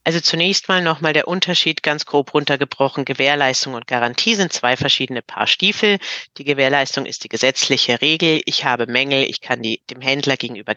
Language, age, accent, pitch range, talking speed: German, 40-59, German, 125-160 Hz, 180 wpm